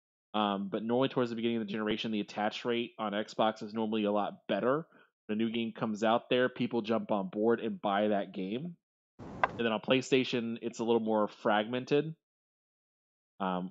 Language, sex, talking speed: English, male, 190 wpm